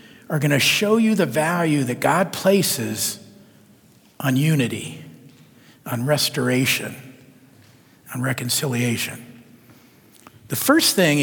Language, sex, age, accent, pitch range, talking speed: English, male, 50-69, American, 140-195 Hz, 95 wpm